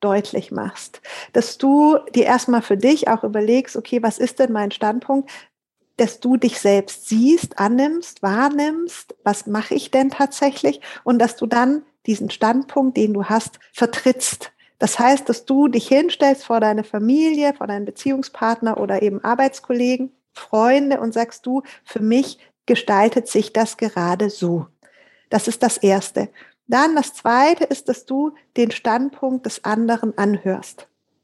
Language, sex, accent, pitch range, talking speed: German, female, German, 225-280 Hz, 150 wpm